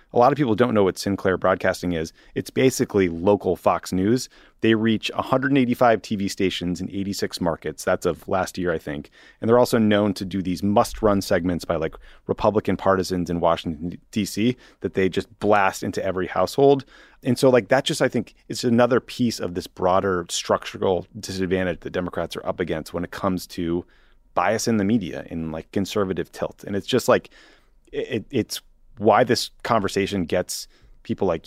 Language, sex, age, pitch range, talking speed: English, male, 30-49, 90-110 Hz, 185 wpm